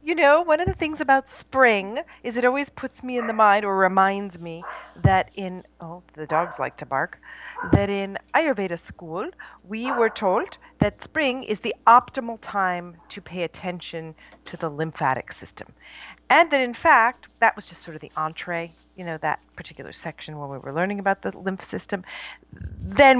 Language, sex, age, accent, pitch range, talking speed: English, female, 40-59, American, 165-220 Hz, 185 wpm